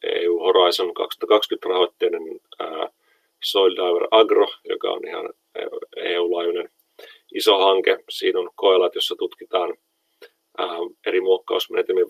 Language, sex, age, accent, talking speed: Finnish, male, 40-59, native, 100 wpm